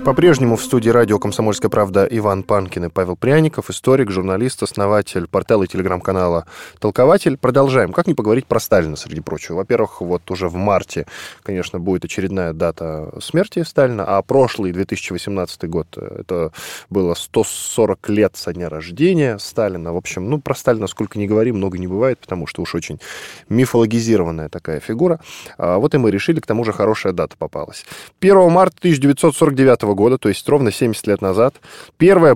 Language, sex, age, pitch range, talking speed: Russian, male, 10-29, 95-130 Hz, 165 wpm